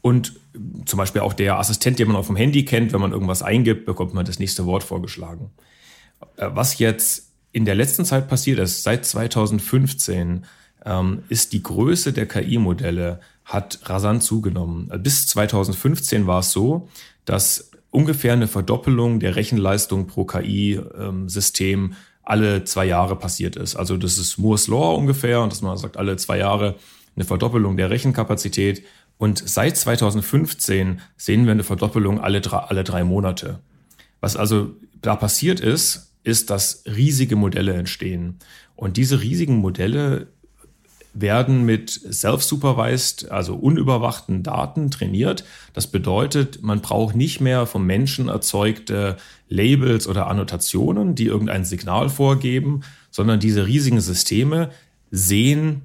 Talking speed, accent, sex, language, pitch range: 140 wpm, German, male, German, 95-125 Hz